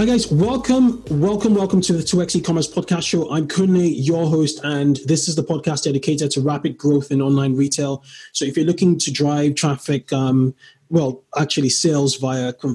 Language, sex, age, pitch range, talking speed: English, male, 20-39, 130-160 Hz, 195 wpm